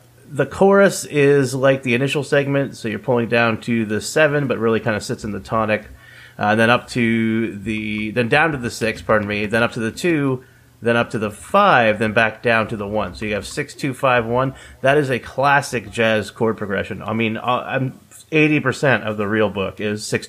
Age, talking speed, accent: 30-49, 220 wpm, American